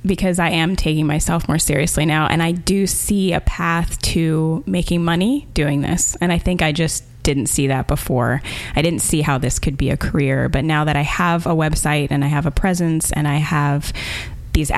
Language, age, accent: English, 20-39, American